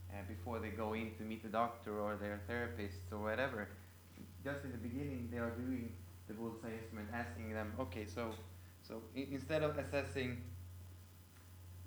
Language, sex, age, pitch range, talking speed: English, male, 20-39, 90-115 Hz, 165 wpm